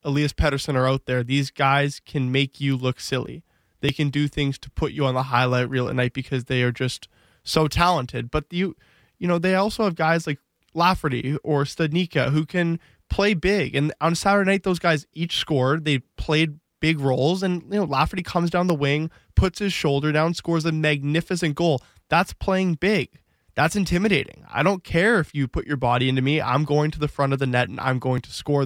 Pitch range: 135-170 Hz